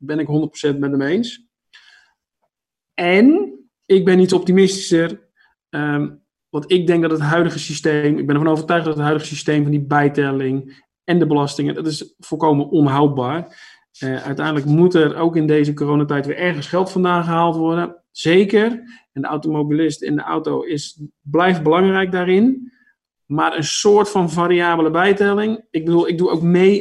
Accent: Dutch